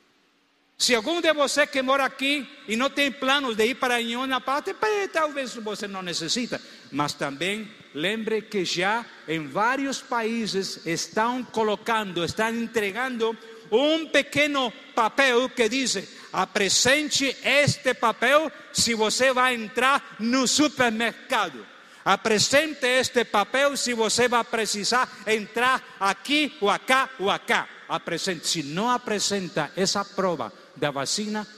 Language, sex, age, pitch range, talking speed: Portuguese, male, 50-69, 175-255 Hz, 125 wpm